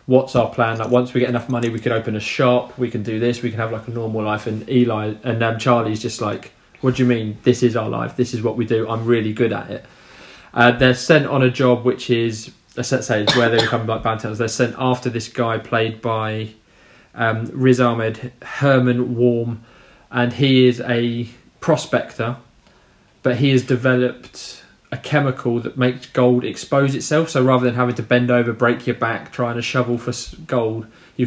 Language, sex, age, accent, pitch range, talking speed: English, male, 20-39, British, 115-130 Hz, 215 wpm